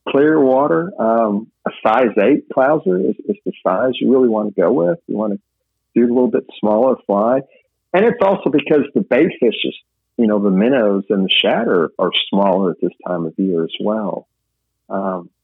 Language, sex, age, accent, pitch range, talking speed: English, male, 50-69, American, 105-135 Hz, 200 wpm